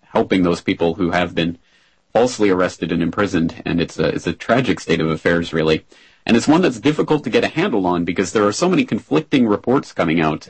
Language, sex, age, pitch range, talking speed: English, male, 40-59, 85-100 Hz, 225 wpm